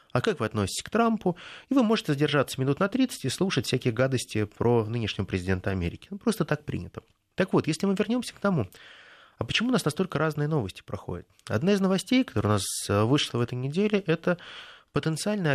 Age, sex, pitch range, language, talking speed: 20-39, male, 115-185 Hz, Russian, 200 wpm